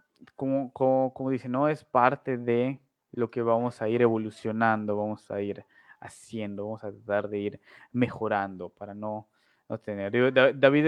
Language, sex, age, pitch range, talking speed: Spanish, male, 20-39, 110-135 Hz, 165 wpm